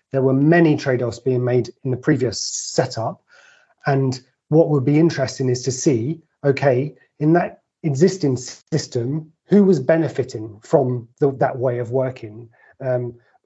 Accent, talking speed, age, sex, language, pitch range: British, 145 wpm, 30-49, male, English, 130-170 Hz